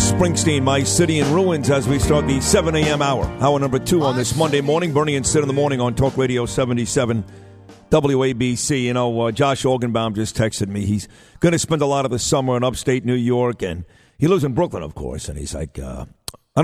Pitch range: 120-150 Hz